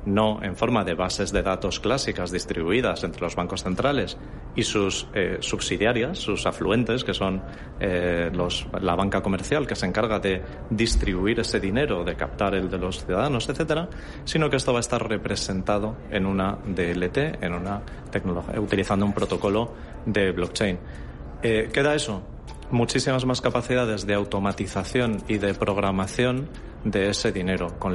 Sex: male